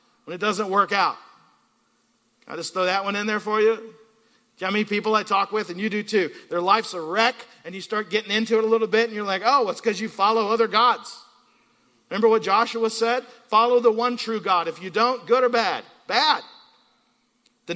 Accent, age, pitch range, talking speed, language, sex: American, 50-69, 165-225 Hz, 225 wpm, English, male